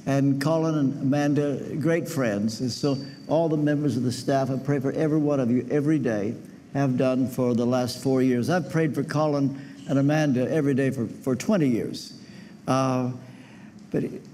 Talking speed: 185 wpm